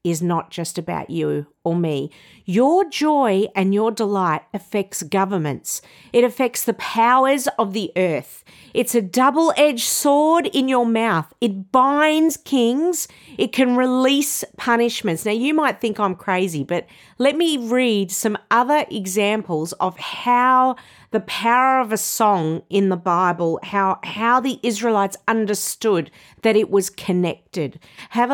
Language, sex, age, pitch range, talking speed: English, female, 50-69, 190-255 Hz, 145 wpm